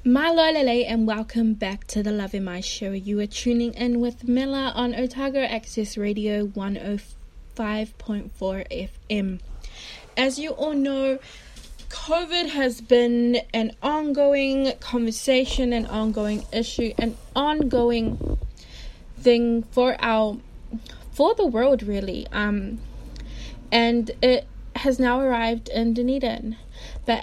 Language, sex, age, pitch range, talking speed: English, female, 20-39, 210-255 Hz, 120 wpm